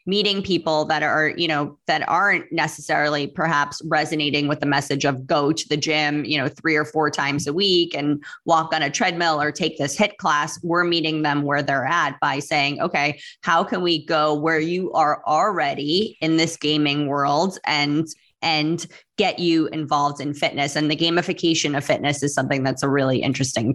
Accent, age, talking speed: American, 20-39, 190 wpm